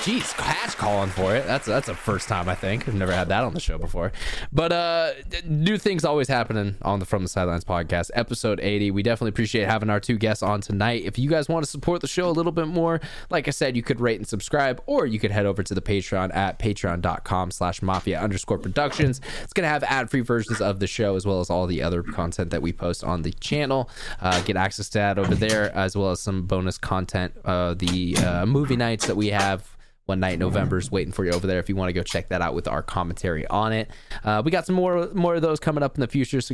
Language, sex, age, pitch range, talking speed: English, male, 20-39, 95-125 Hz, 260 wpm